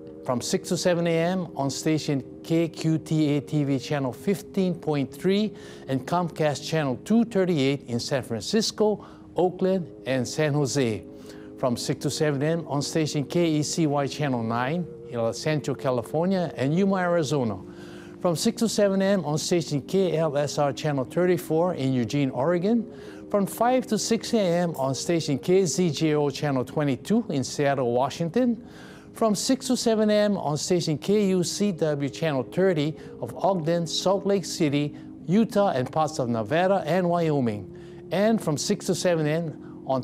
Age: 50-69